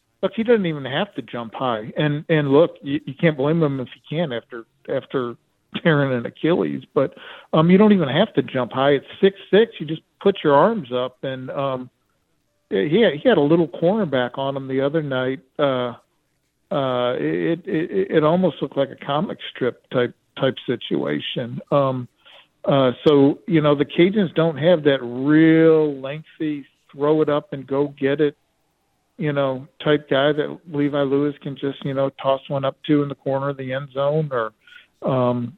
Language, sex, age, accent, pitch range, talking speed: English, male, 50-69, American, 135-160 Hz, 190 wpm